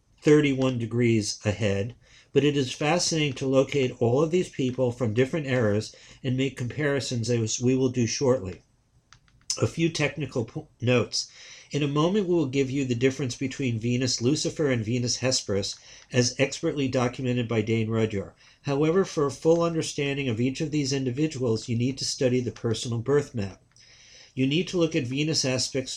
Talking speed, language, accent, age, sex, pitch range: 175 wpm, English, American, 50-69, male, 120-145 Hz